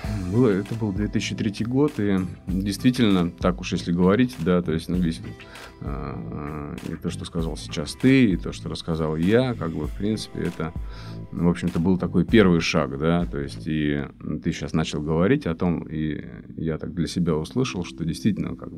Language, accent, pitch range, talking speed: Russian, native, 80-105 Hz, 180 wpm